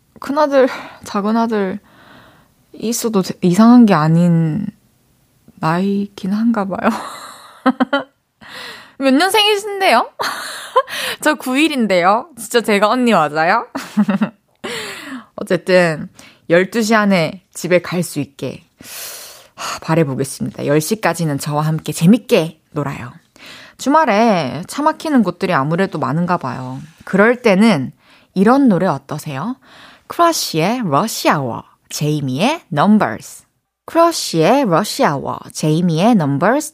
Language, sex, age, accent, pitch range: Korean, female, 20-39, native, 160-255 Hz